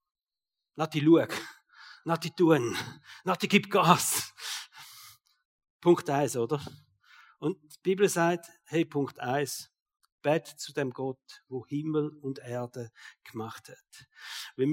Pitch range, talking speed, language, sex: 160-195 Hz, 120 wpm, German, male